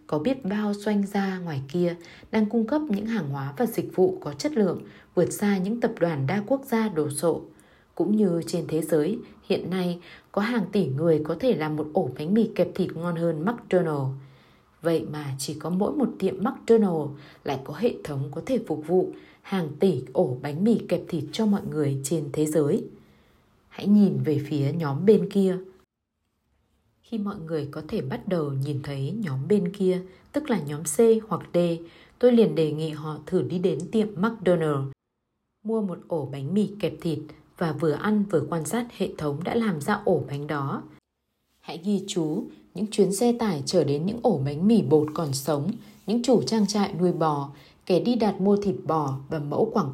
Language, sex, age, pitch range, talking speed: Vietnamese, female, 20-39, 155-210 Hz, 200 wpm